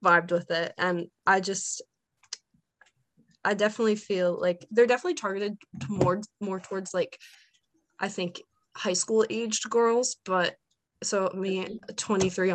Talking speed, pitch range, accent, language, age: 135 wpm, 185-225 Hz, American, English, 20-39